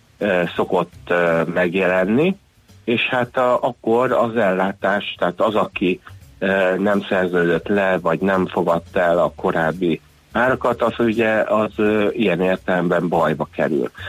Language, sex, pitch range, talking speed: Hungarian, male, 90-110 Hz, 120 wpm